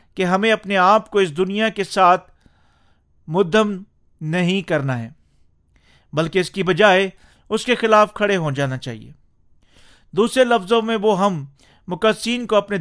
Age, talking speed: 40-59, 150 wpm